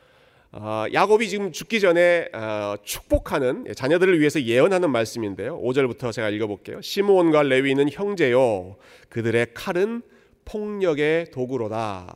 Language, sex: Korean, male